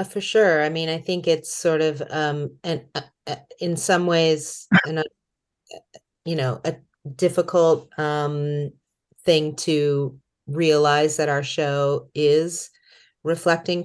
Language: English